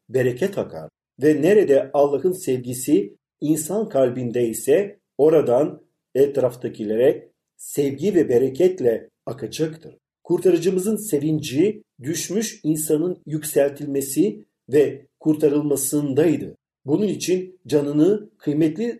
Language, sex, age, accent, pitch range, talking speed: Turkish, male, 50-69, native, 140-195 Hz, 80 wpm